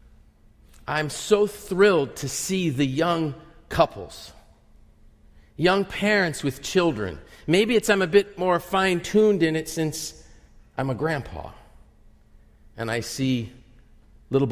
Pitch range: 115-180 Hz